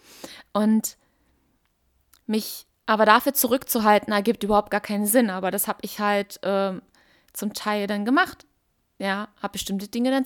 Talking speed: 145 wpm